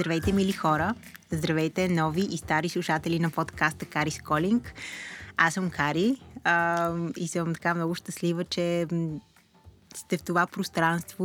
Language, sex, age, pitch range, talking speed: Bulgarian, female, 20-39, 155-180 Hz, 140 wpm